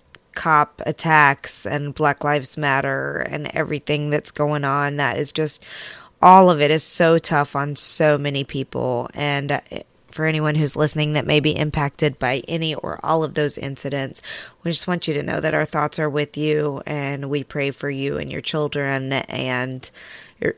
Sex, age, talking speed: female, 20-39, 180 wpm